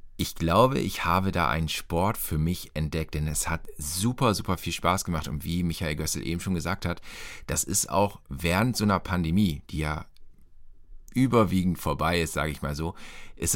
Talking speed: 190 wpm